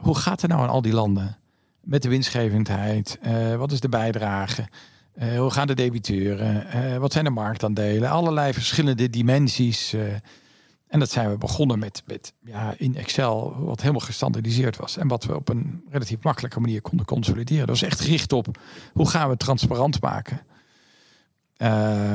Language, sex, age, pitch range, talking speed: Dutch, male, 50-69, 110-135 Hz, 180 wpm